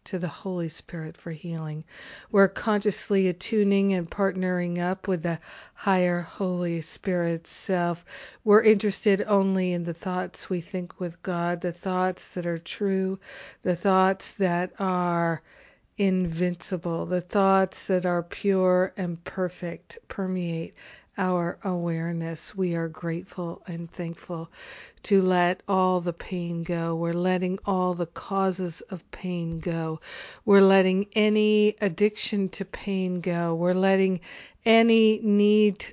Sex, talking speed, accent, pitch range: female, 130 wpm, American, 170-195 Hz